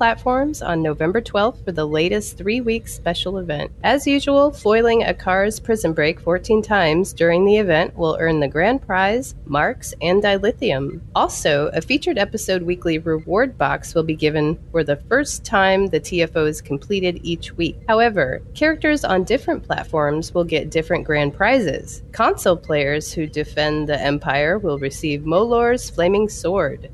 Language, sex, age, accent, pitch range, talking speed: English, female, 30-49, American, 155-215 Hz, 160 wpm